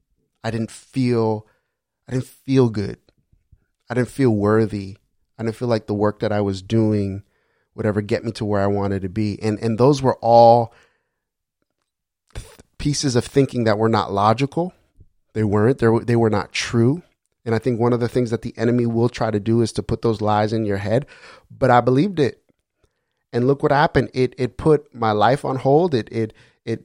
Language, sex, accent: English, male, American